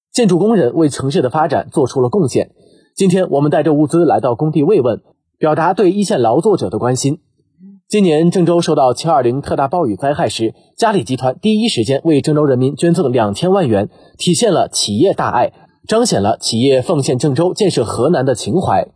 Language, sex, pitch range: Chinese, male, 130-185 Hz